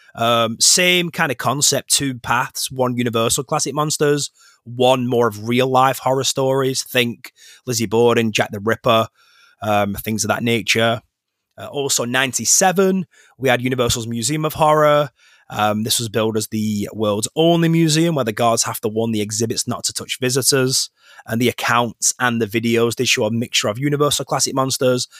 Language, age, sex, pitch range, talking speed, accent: English, 30-49, male, 115-140 Hz, 175 wpm, British